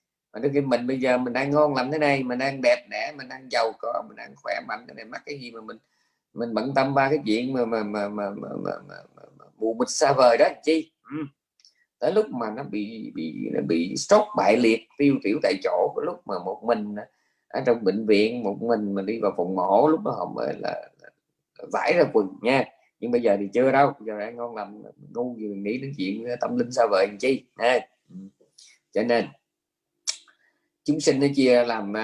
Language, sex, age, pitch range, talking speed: Vietnamese, male, 20-39, 110-145 Hz, 200 wpm